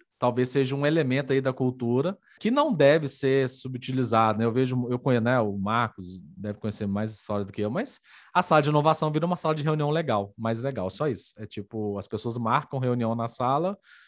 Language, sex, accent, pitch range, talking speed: Portuguese, male, Brazilian, 110-140 Hz, 215 wpm